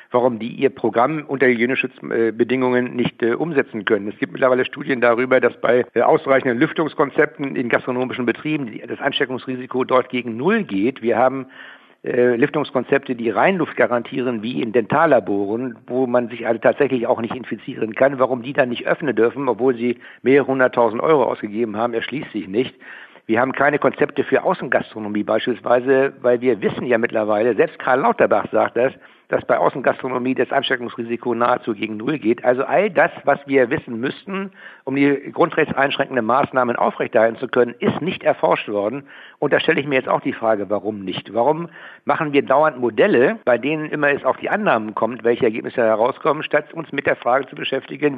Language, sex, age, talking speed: German, male, 60-79, 175 wpm